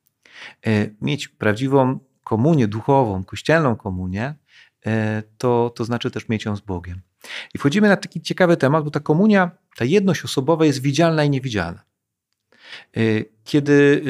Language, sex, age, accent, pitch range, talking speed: Polish, male, 40-59, native, 110-145 Hz, 130 wpm